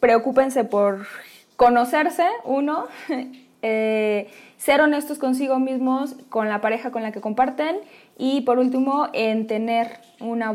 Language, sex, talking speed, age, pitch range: Spanish, female, 125 wpm, 20-39, 220-285 Hz